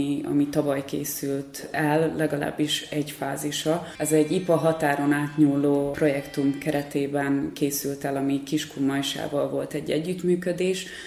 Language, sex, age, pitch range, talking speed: Hungarian, female, 20-39, 140-155 Hz, 120 wpm